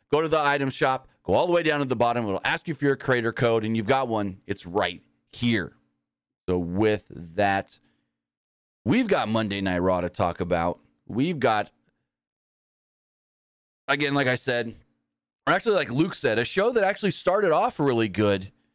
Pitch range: 105-145 Hz